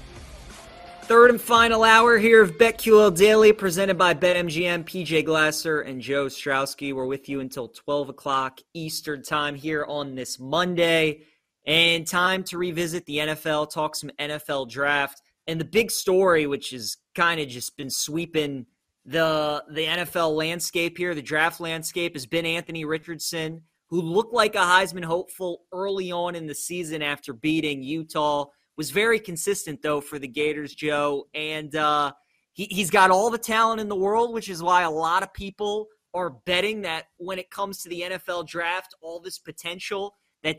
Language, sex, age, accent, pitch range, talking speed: English, male, 20-39, American, 150-185 Hz, 170 wpm